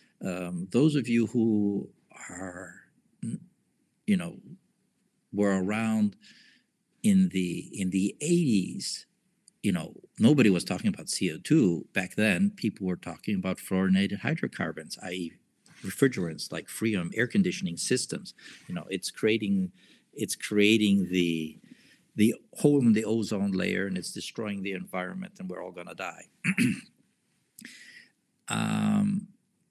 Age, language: 60-79, English